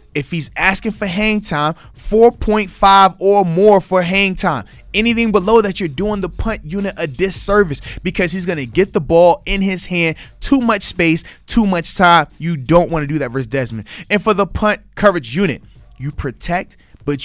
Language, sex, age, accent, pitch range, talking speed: English, male, 20-39, American, 145-200 Hz, 190 wpm